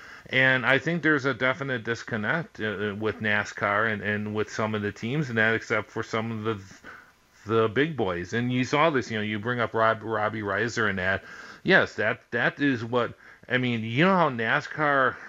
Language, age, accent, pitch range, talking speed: English, 40-59, American, 105-125 Hz, 205 wpm